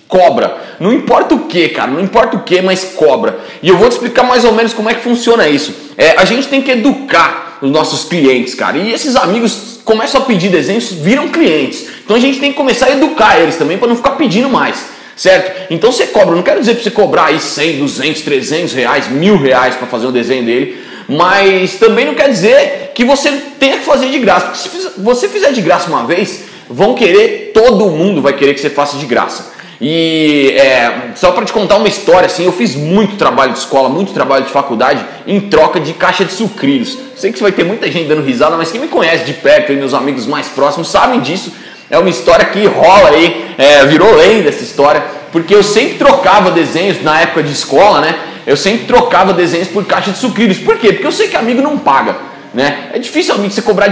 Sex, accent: male, Brazilian